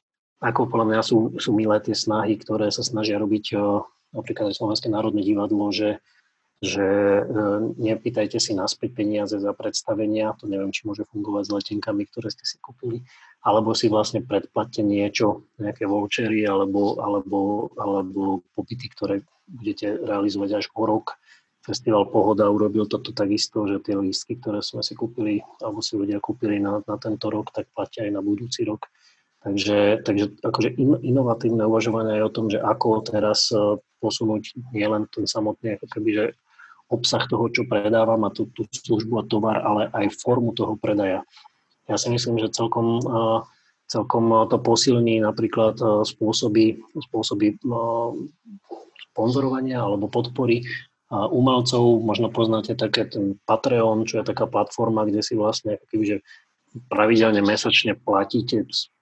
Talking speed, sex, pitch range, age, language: 140 wpm, male, 105-115 Hz, 30-49, Slovak